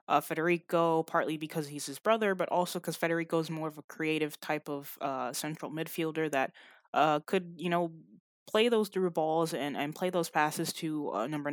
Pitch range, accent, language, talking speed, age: 155-185 Hz, American, English, 200 wpm, 20-39